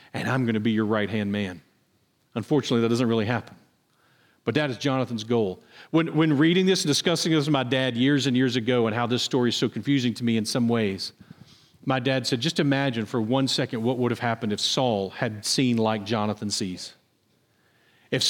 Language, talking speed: English, 210 wpm